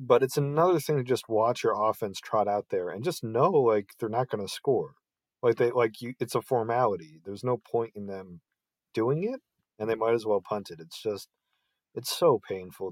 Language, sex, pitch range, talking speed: English, male, 95-115 Hz, 220 wpm